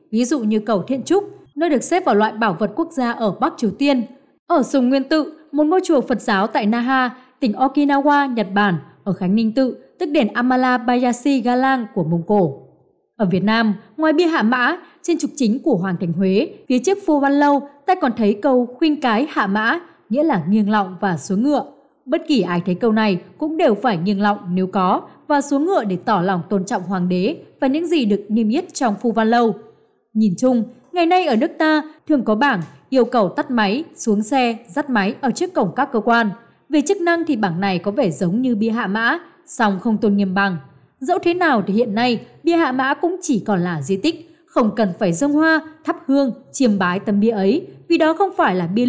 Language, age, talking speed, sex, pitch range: Vietnamese, 20-39, 225 wpm, female, 205-295 Hz